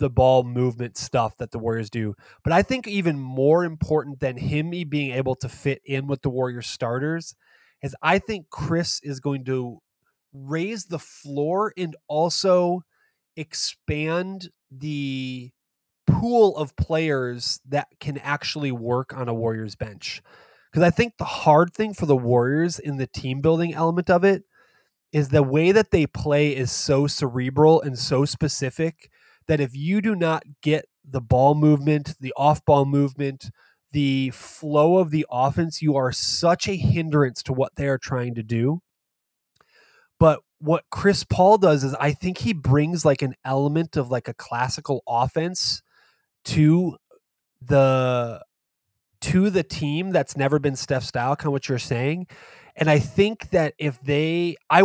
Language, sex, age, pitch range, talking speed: English, male, 20-39, 130-165 Hz, 160 wpm